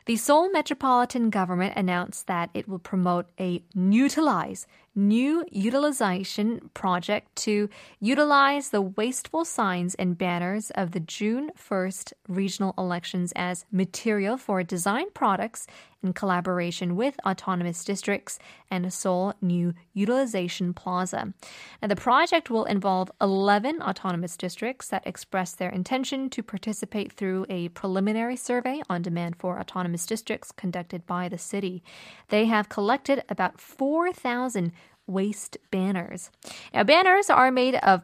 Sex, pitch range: female, 185-230 Hz